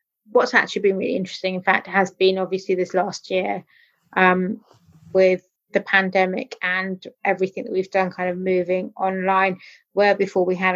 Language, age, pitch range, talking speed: English, 20-39, 180-195 Hz, 165 wpm